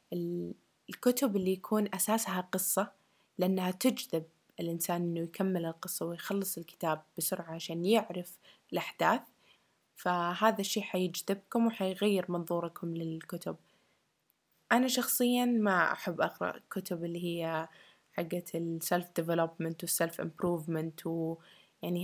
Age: 20-39